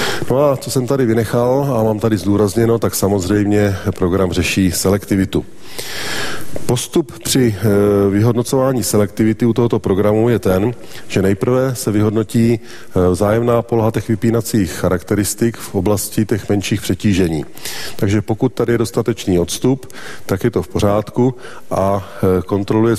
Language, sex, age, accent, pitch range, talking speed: Czech, male, 40-59, native, 100-115 Hz, 135 wpm